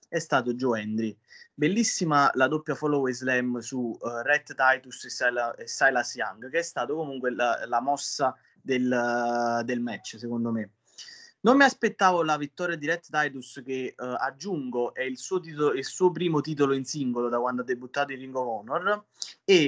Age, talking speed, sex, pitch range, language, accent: 20-39, 185 wpm, male, 125-160 Hz, Italian, native